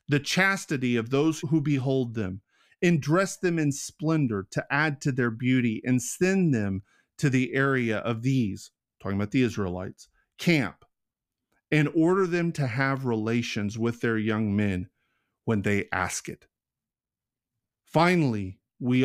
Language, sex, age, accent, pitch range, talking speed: English, male, 40-59, American, 115-150 Hz, 145 wpm